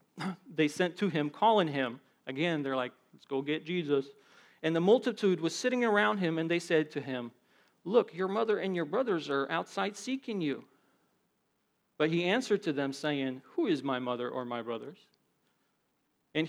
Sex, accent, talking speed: male, American, 180 wpm